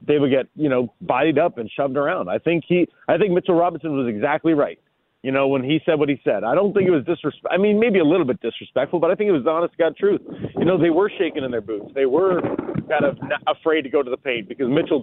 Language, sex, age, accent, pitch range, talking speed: English, male, 40-59, American, 135-170 Hz, 280 wpm